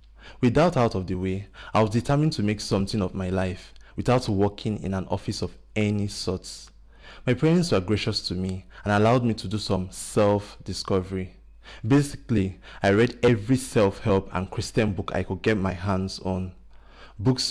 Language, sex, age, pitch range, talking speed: English, male, 20-39, 95-115 Hz, 170 wpm